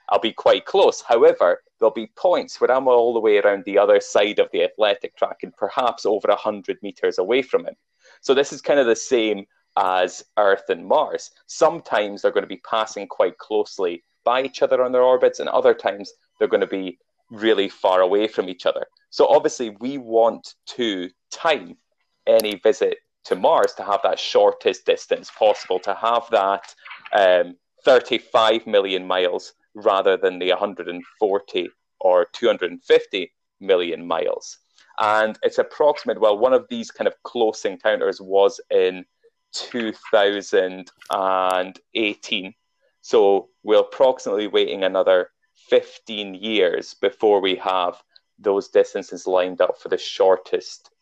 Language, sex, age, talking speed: English, male, 30-49, 150 wpm